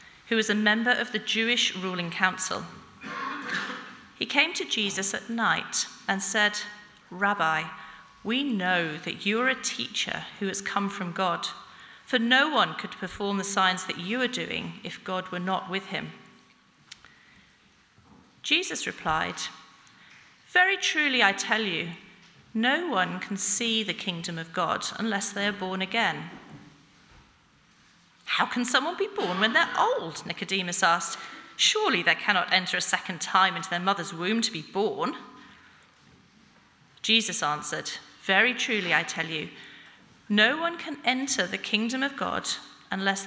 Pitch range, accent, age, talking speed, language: 185-240 Hz, British, 40-59, 145 wpm, English